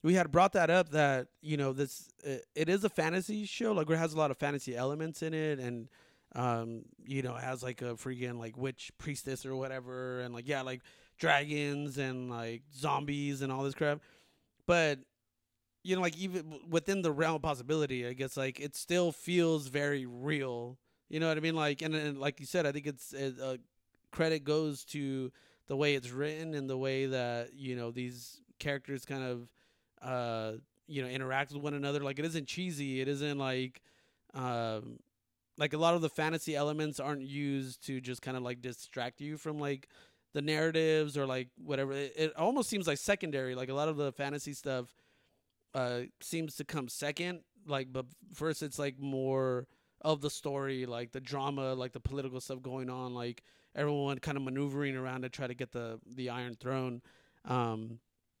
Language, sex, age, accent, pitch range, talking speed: English, male, 30-49, American, 130-150 Hz, 195 wpm